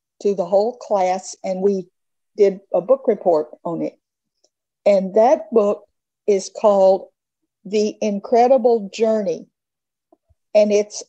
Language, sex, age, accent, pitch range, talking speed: English, female, 50-69, American, 200-245 Hz, 120 wpm